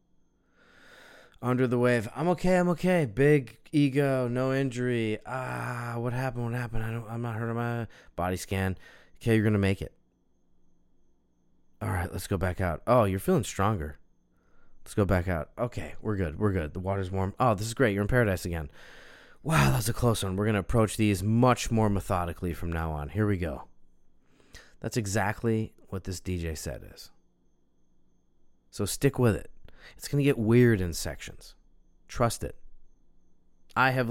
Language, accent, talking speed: English, American, 180 wpm